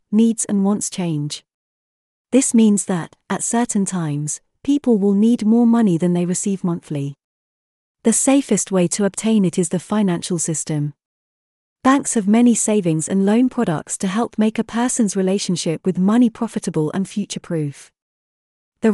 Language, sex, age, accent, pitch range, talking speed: English, female, 30-49, British, 175-225 Hz, 155 wpm